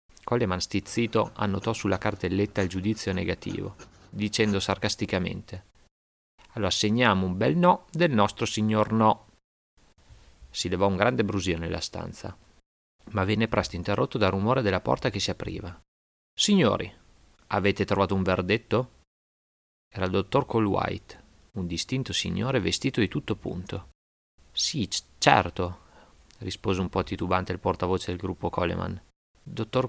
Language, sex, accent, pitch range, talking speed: Italian, male, native, 90-105 Hz, 130 wpm